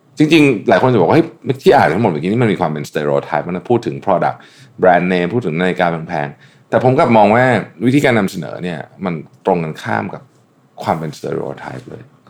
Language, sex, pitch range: Thai, male, 85-120 Hz